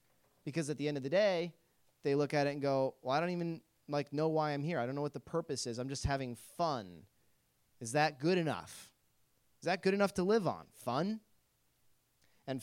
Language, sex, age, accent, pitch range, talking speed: English, male, 20-39, American, 125-180 Hz, 220 wpm